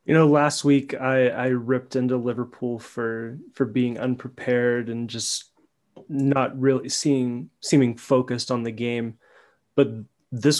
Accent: American